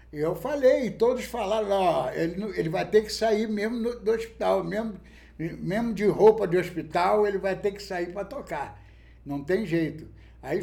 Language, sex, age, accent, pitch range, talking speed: Portuguese, male, 60-79, Brazilian, 140-190 Hz, 170 wpm